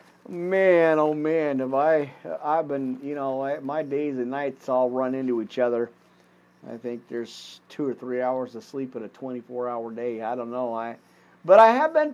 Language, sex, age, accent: English, male, 50-69, American